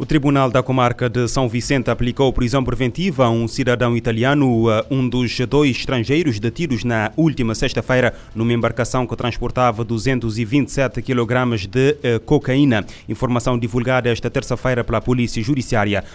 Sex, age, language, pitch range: male, 30-49, Portuguese, 115-130 Hz